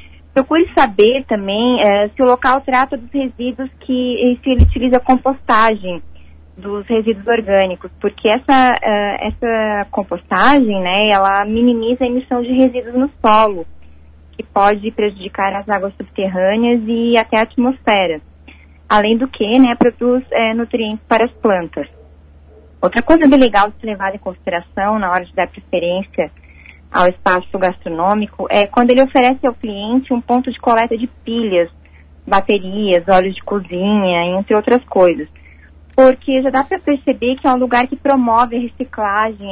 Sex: female